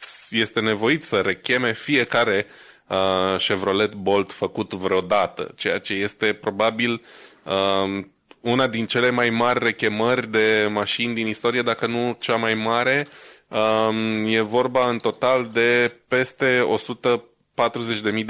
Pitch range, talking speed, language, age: 100-120 Hz, 115 wpm, Romanian, 20-39